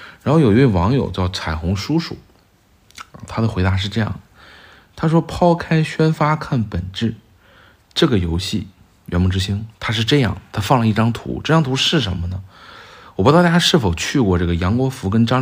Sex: male